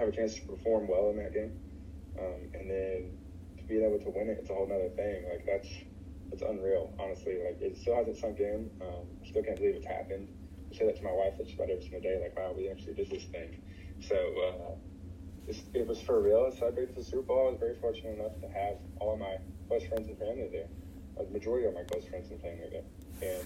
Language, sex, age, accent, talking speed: English, male, 20-39, American, 255 wpm